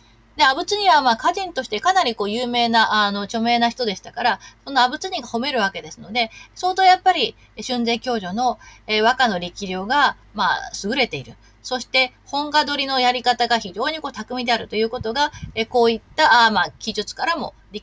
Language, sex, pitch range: Japanese, female, 175-250 Hz